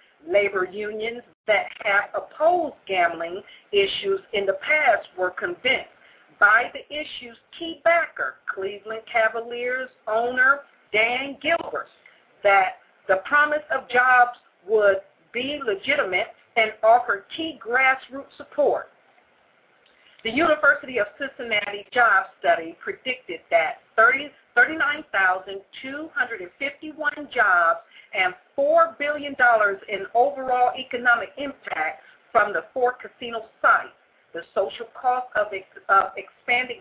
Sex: female